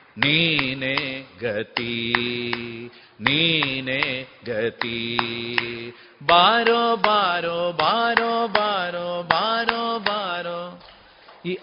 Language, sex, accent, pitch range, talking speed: Kannada, male, native, 135-195 Hz, 55 wpm